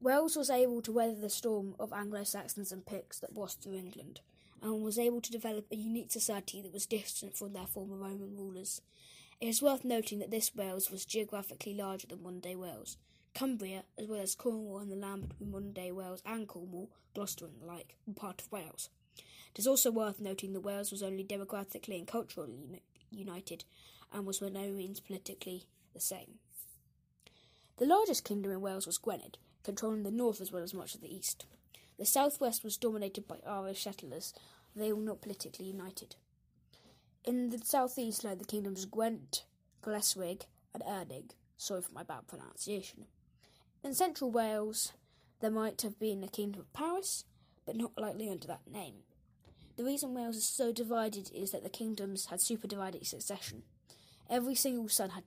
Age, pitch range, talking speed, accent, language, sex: 20-39, 195-225 Hz, 185 wpm, British, English, female